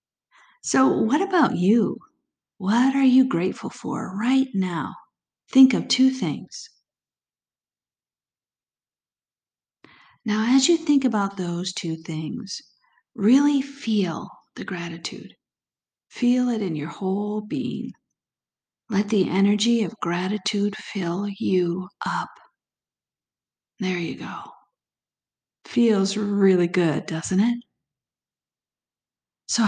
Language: English